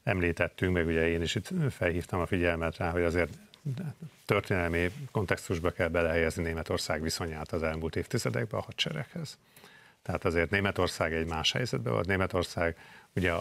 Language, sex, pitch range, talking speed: Hungarian, male, 85-100 Hz, 145 wpm